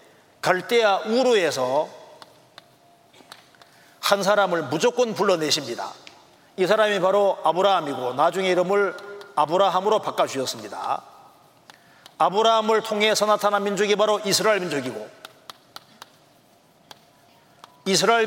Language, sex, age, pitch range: Korean, male, 40-59, 175-215 Hz